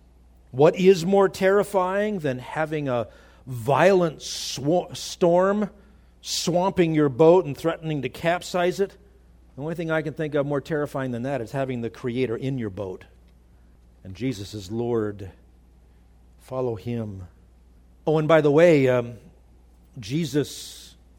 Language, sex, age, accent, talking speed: English, male, 50-69, American, 135 wpm